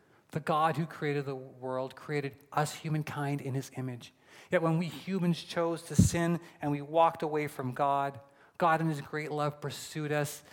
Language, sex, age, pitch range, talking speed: English, male, 40-59, 125-155 Hz, 180 wpm